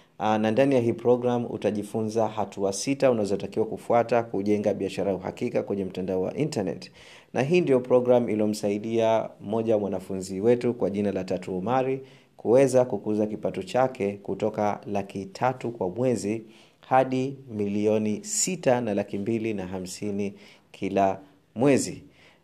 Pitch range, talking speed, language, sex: 100-125 Hz, 135 wpm, Swahili, male